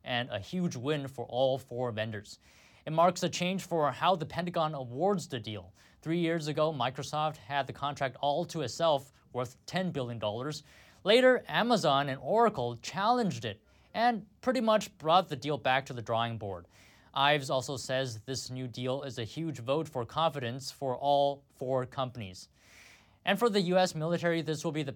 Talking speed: 180 wpm